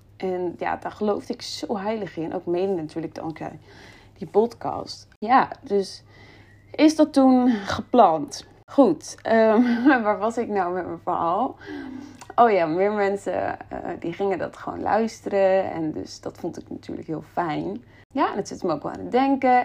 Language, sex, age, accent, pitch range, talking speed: Dutch, female, 20-39, Dutch, 170-245 Hz, 175 wpm